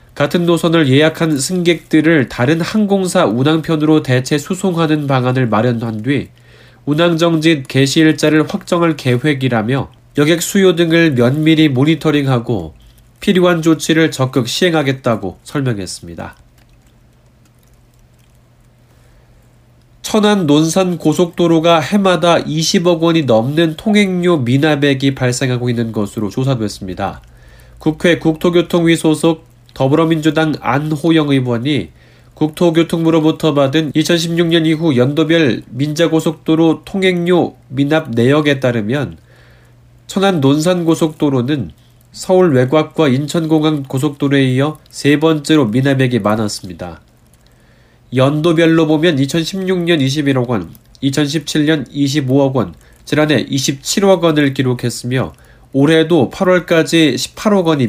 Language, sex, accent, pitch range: Korean, male, native, 120-165 Hz